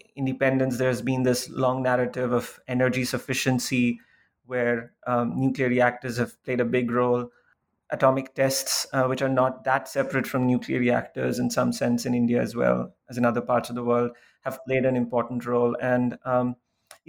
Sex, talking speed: male, 175 wpm